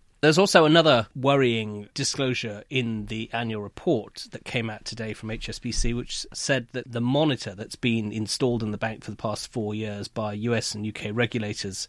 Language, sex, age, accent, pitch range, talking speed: English, male, 30-49, British, 110-130 Hz, 180 wpm